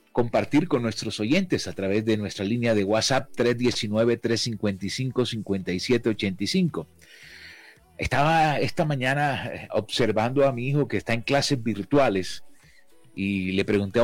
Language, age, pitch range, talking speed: Spanish, 40-59, 105-140 Hz, 115 wpm